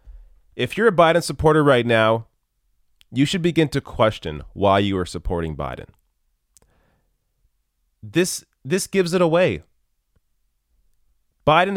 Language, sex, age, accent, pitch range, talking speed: English, male, 30-49, American, 85-135 Hz, 115 wpm